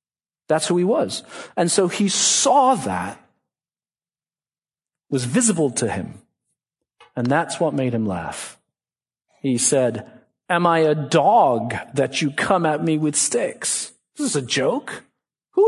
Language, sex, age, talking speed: English, male, 50-69, 145 wpm